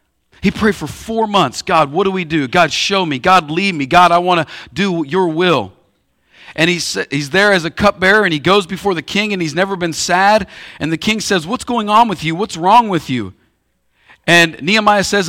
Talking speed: 225 wpm